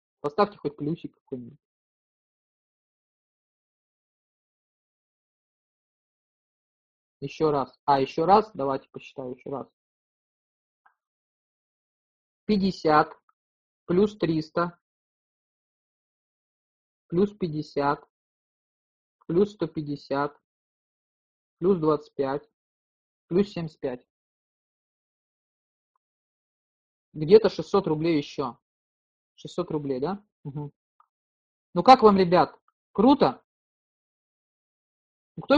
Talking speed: 60 wpm